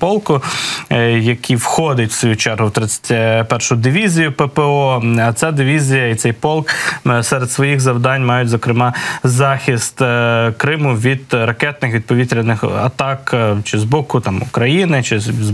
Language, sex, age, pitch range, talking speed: Ukrainian, male, 20-39, 120-145 Hz, 130 wpm